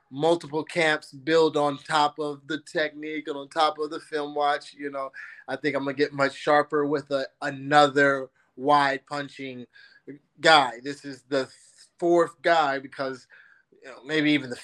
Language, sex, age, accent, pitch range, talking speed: English, male, 20-39, American, 135-150 Hz, 170 wpm